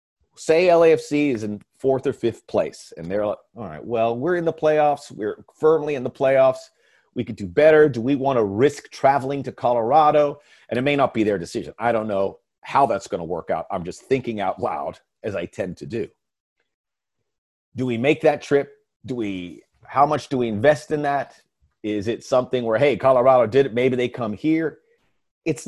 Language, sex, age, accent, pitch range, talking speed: English, male, 40-59, American, 115-150 Hz, 205 wpm